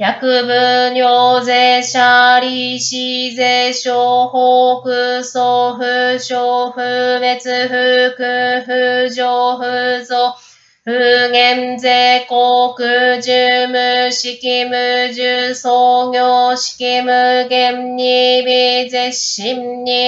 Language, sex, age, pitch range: Japanese, female, 20-39, 245-250 Hz